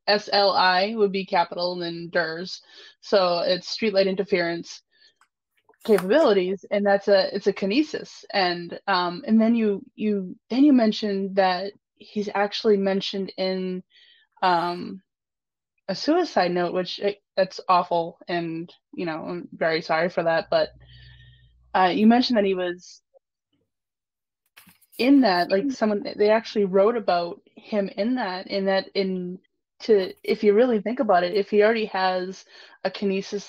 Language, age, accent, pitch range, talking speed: English, 20-39, American, 180-210 Hz, 145 wpm